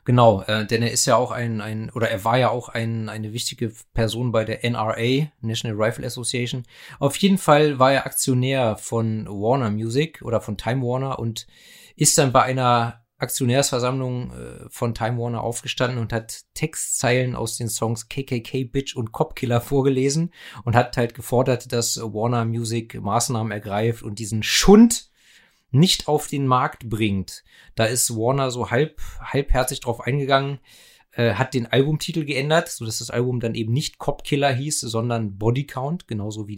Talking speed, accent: 170 wpm, German